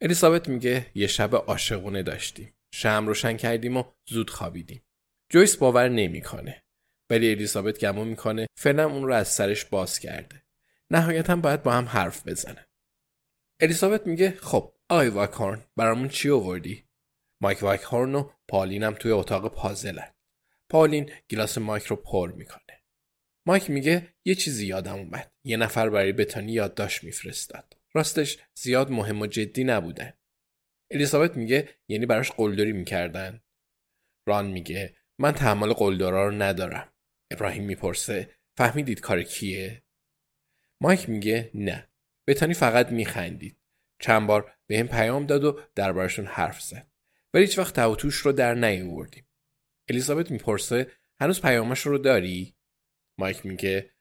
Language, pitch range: Persian, 105-145 Hz